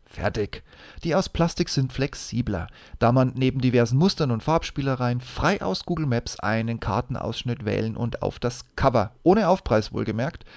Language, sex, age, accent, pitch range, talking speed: German, male, 30-49, German, 115-155 Hz, 155 wpm